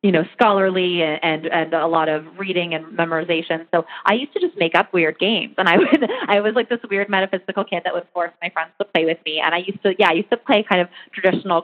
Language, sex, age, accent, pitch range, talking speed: English, female, 30-49, American, 165-210 Hz, 270 wpm